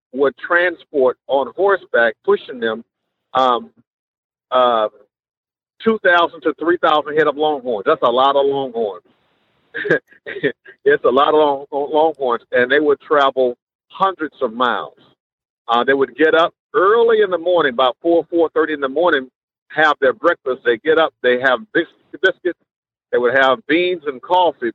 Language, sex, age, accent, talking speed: English, male, 50-69, American, 160 wpm